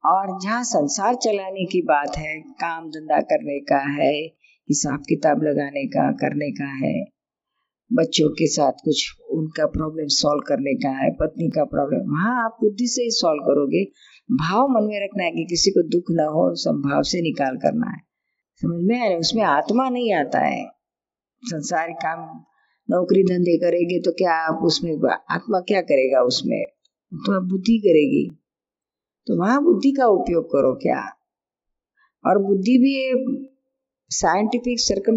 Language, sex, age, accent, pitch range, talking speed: Hindi, female, 50-69, native, 170-240 Hz, 155 wpm